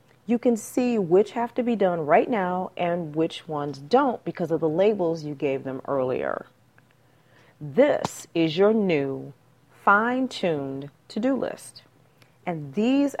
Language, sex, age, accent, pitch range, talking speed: English, female, 40-59, American, 140-195 Hz, 150 wpm